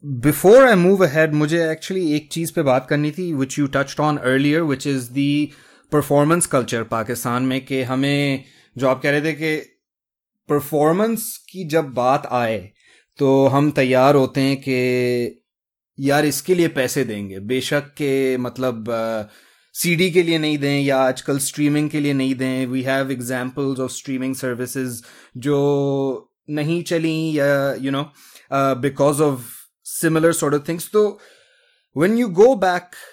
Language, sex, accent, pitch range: English, male, Indian, 135-165 Hz